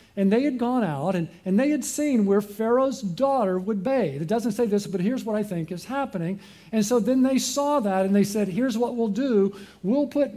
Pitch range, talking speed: 175-230 Hz, 235 wpm